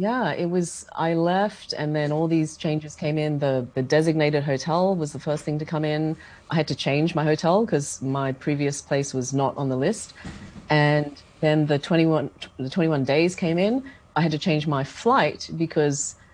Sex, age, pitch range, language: female, 30-49, 140-165 Hz, English